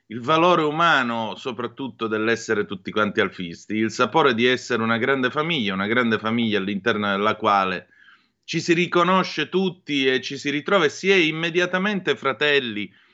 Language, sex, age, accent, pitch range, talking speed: Italian, male, 30-49, native, 115-160 Hz, 155 wpm